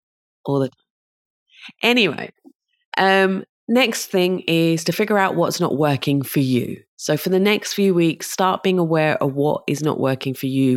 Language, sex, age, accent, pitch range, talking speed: English, female, 30-49, British, 130-175 Hz, 180 wpm